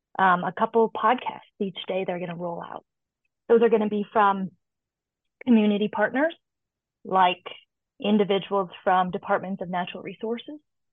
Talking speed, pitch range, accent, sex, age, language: 130 wpm, 195-235 Hz, American, female, 30-49, English